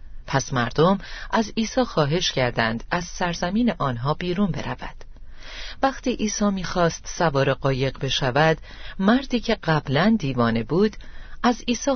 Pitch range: 125-185 Hz